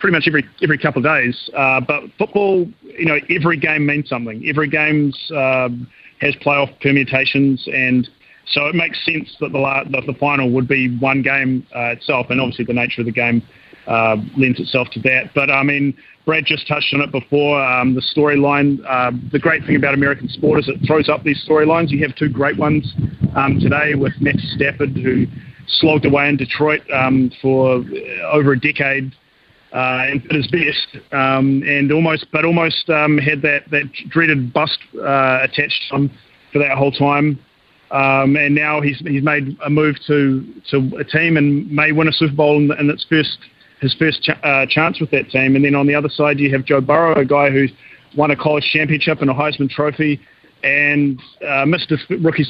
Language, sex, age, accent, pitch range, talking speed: English, male, 30-49, Australian, 135-150 Hz, 200 wpm